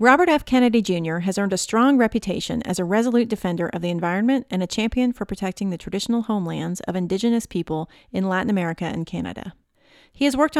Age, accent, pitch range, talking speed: 30-49, American, 185-245 Hz, 200 wpm